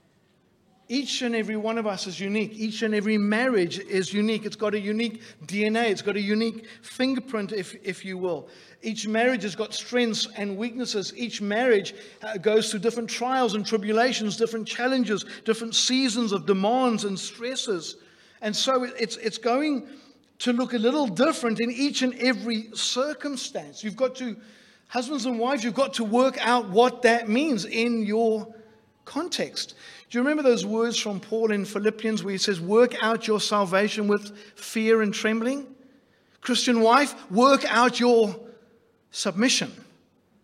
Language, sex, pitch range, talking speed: English, male, 200-245 Hz, 160 wpm